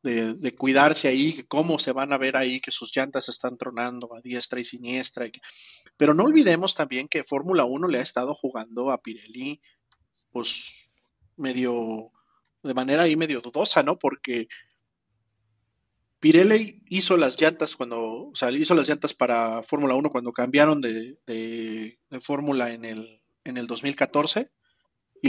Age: 40-59